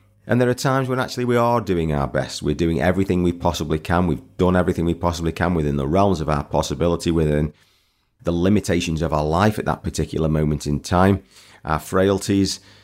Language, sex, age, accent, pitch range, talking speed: English, male, 30-49, British, 75-95 Hz, 200 wpm